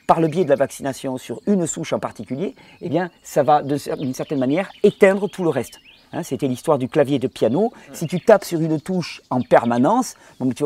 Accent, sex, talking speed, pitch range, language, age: French, male, 225 wpm, 135-180 Hz, French, 40-59